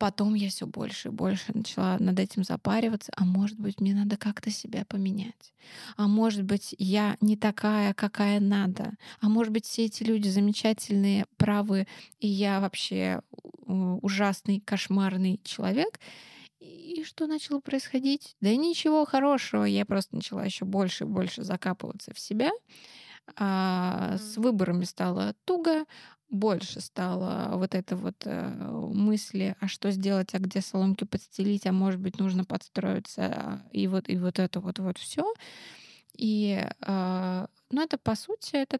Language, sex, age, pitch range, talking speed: Russian, female, 20-39, 190-220 Hz, 145 wpm